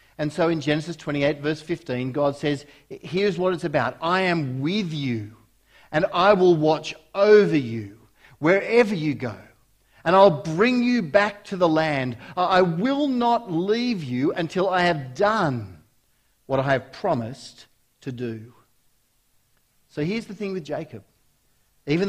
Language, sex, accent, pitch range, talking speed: English, male, Australian, 125-185 Hz, 150 wpm